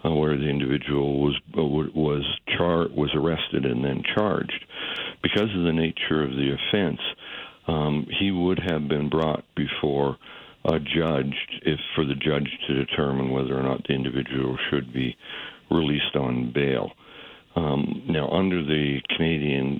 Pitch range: 70-80 Hz